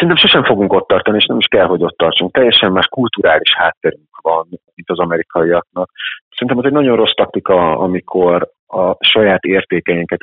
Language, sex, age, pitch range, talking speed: Hungarian, male, 30-49, 85-110 Hz, 170 wpm